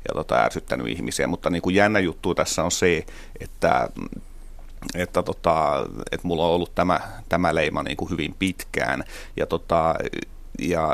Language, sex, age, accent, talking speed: Finnish, male, 30-49, native, 155 wpm